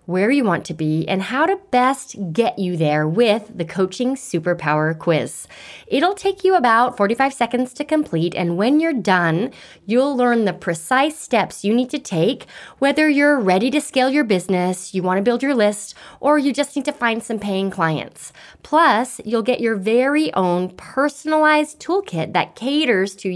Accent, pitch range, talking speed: American, 185-265 Hz, 180 wpm